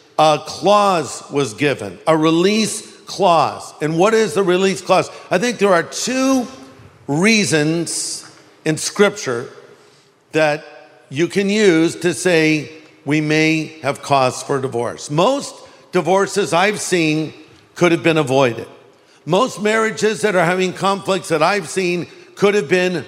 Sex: male